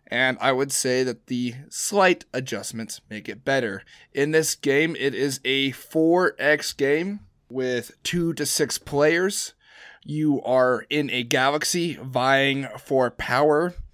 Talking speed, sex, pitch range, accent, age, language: 140 wpm, male, 125-150 Hz, American, 20-39, English